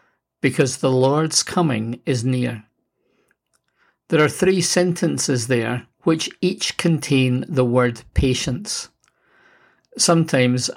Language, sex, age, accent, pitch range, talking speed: English, male, 50-69, British, 125-155 Hz, 100 wpm